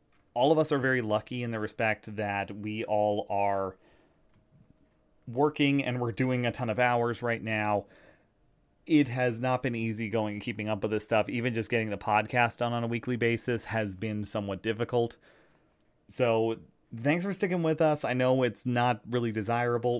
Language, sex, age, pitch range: English, male, 30-49, 105-125 Hz